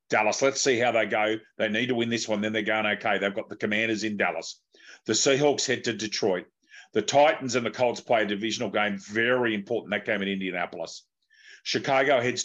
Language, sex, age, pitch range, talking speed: English, male, 40-59, 105-130 Hz, 210 wpm